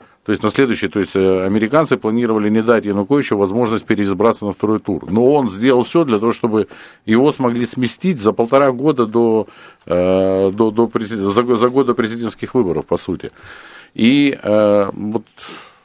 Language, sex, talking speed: Russian, male, 165 wpm